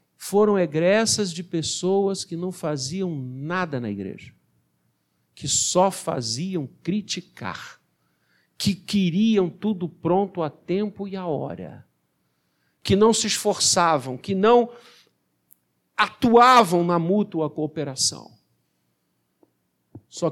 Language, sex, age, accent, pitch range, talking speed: Portuguese, male, 50-69, Brazilian, 120-190 Hz, 100 wpm